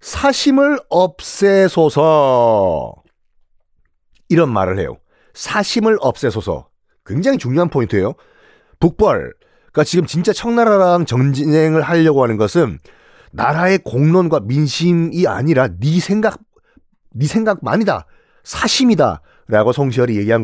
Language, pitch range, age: Korean, 120-190 Hz, 40-59